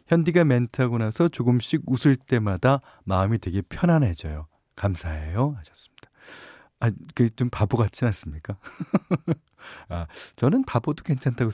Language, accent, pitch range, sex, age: Korean, native, 95-150 Hz, male, 40-59